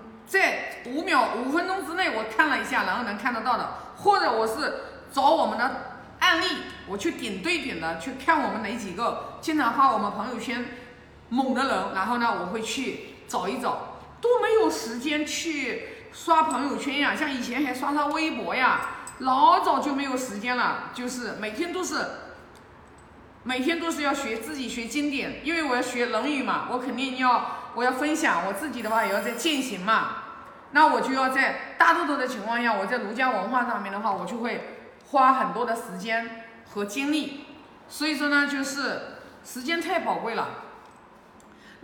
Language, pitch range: Chinese, 240-320 Hz